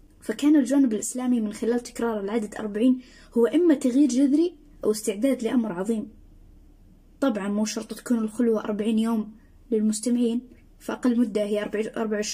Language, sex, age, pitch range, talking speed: Arabic, female, 20-39, 210-250 Hz, 135 wpm